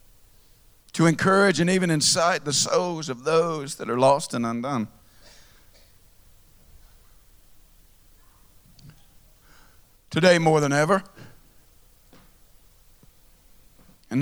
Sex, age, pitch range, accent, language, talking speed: male, 50-69, 100-165 Hz, American, English, 80 wpm